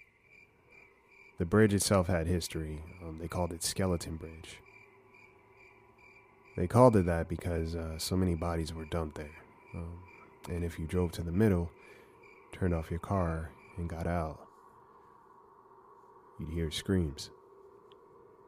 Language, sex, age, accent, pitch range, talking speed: English, male, 30-49, American, 85-120 Hz, 135 wpm